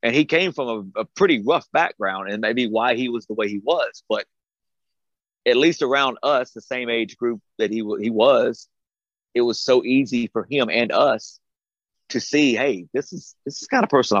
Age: 40-59